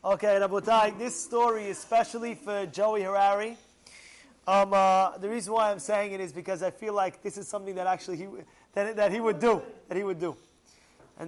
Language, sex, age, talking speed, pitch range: English, male, 20-39, 195 wpm, 165-205 Hz